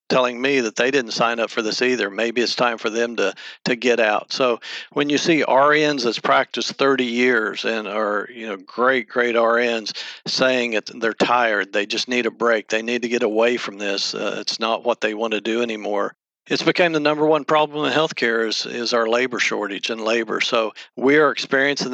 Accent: American